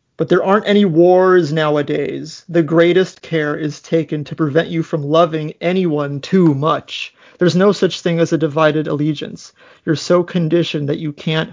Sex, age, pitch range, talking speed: male, 30-49, 155-175 Hz, 170 wpm